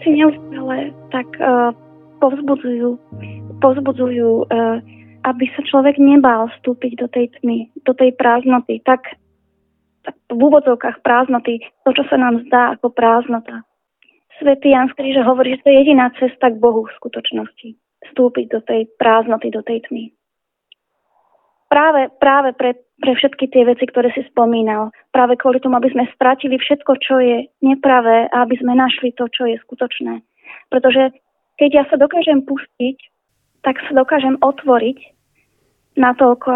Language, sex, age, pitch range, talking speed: Slovak, female, 20-39, 240-280 Hz, 145 wpm